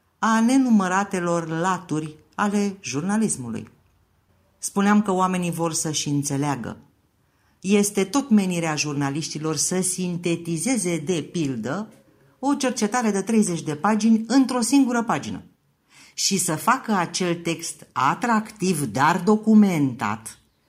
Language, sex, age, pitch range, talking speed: English, female, 50-69, 140-195 Hz, 105 wpm